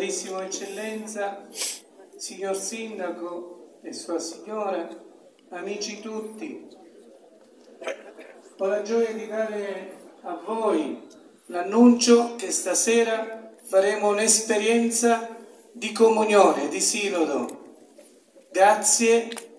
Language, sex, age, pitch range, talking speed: Italian, male, 50-69, 190-225 Hz, 75 wpm